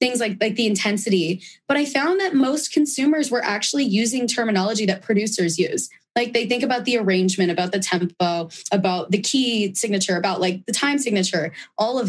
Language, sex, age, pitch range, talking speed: English, female, 20-39, 190-235 Hz, 190 wpm